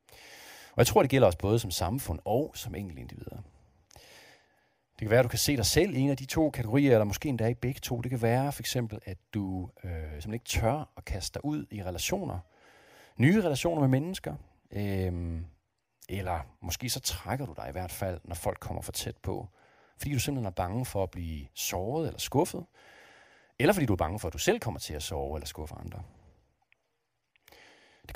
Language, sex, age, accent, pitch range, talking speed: Danish, male, 40-59, native, 90-135 Hz, 205 wpm